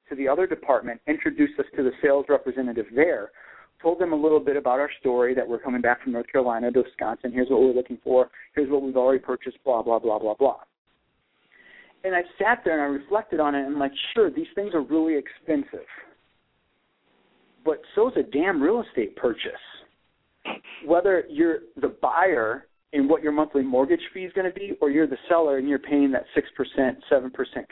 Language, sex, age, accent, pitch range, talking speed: English, male, 50-69, American, 125-190 Hz, 200 wpm